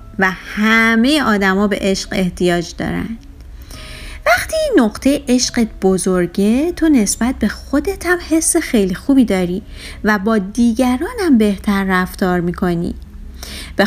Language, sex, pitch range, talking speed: Persian, female, 175-275 Hz, 115 wpm